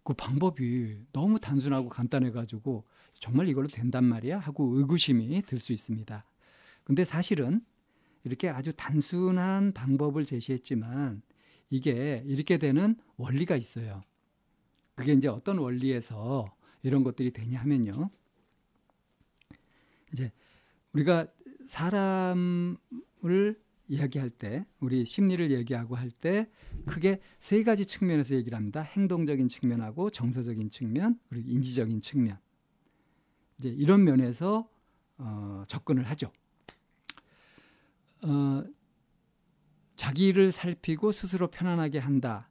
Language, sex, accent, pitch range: Korean, male, native, 125-185 Hz